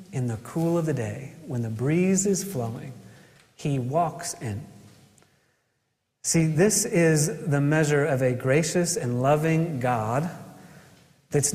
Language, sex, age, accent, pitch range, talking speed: English, male, 30-49, American, 135-180 Hz, 135 wpm